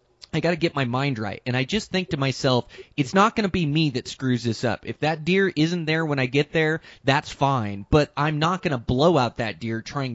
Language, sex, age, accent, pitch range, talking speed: English, male, 30-49, American, 120-145 Hz, 260 wpm